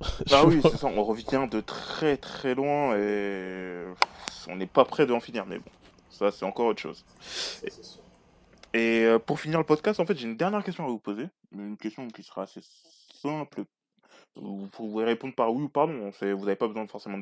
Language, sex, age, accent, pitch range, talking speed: French, male, 20-39, French, 100-145 Hz, 200 wpm